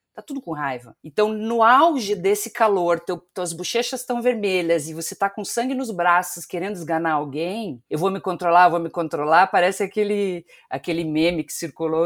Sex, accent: female, Brazilian